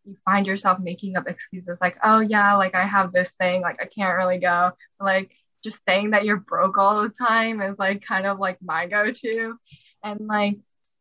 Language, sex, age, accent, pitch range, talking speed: English, female, 10-29, American, 185-210 Hz, 200 wpm